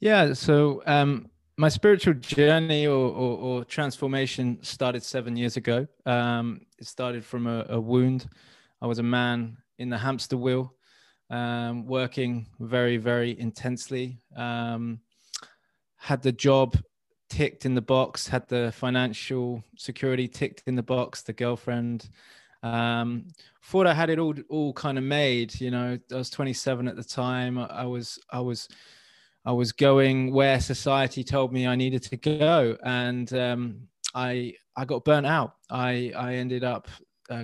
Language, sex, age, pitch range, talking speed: English, male, 20-39, 120-130 Hz, 155 wpm